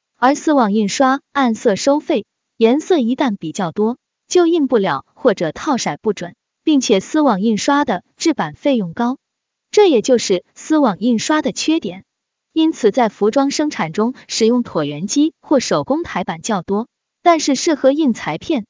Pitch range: 215-295 Hz